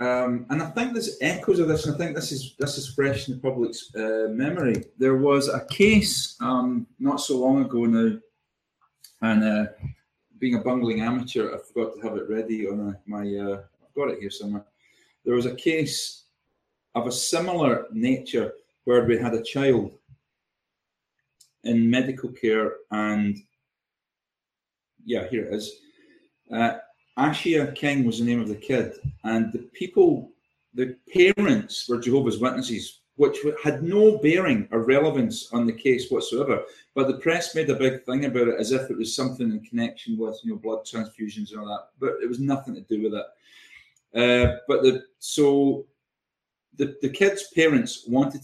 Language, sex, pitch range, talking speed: English, male, 115-150 Hz, 175 wpm